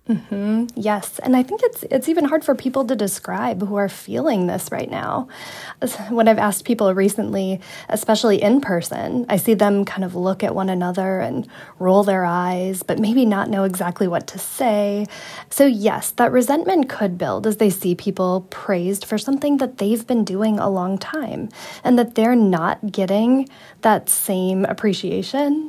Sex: female